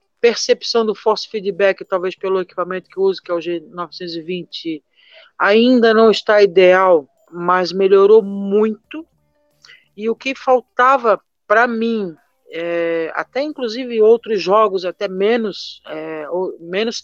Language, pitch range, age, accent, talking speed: Portuguese, 180-225 Hz, 50-69, Brazilian, 125 wpm